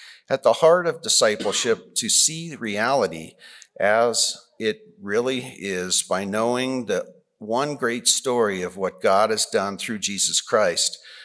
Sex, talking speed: male, 140 wpm